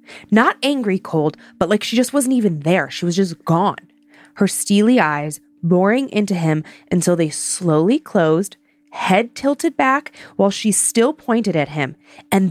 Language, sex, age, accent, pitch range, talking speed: English, female, 20-39, American, 170-245 Hz, 165 wpm